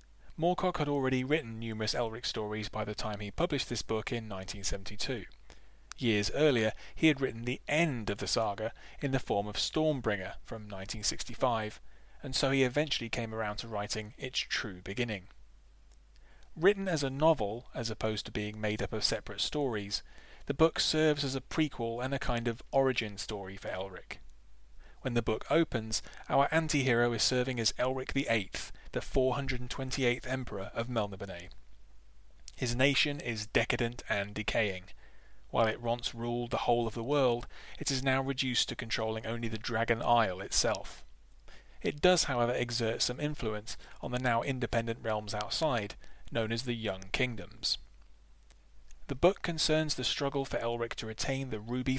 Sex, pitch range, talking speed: male, 105-130 Hz, 165 wpm